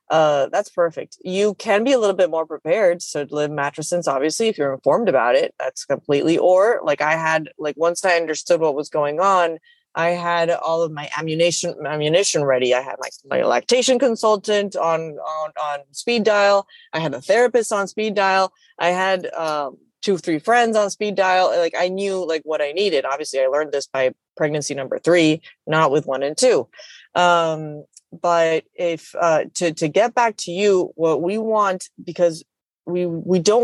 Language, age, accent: English, 20-39, American